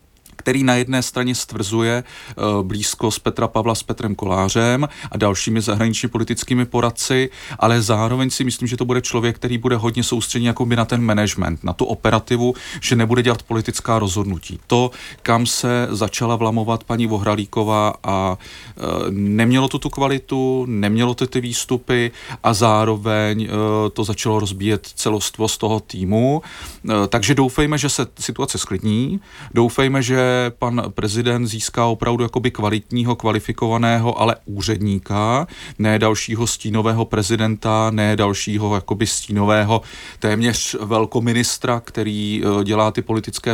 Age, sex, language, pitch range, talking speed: 40-59, male, Czech, 105-125 Hz, 135 wpm